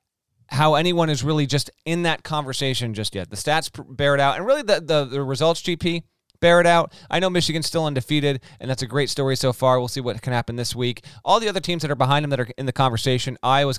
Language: English